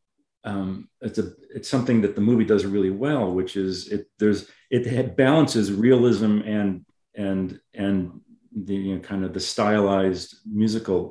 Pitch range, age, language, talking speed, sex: 95-115 Hz, 40-59, English, 155 wpm, male